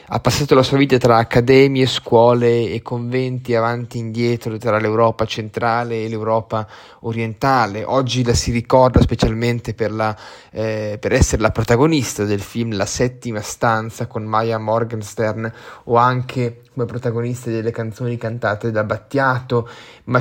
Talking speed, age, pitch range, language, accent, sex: 145 wpm, 20-39, 110-130 Hz, Italian, native, male